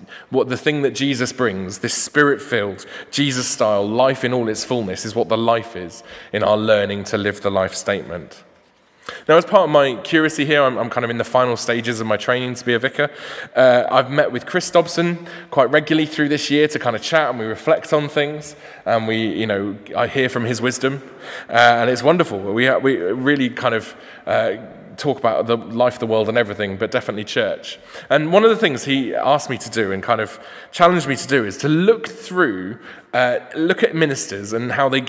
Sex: male